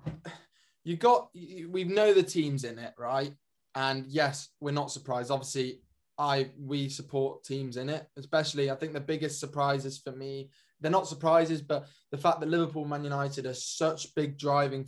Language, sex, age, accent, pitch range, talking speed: English, male, 10-29, British, 135-155 Hz, 170 wpm